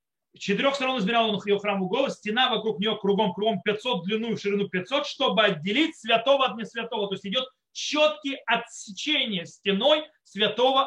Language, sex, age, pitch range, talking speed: Russian, male, 30-49, 185-245 Hz, 160 wpm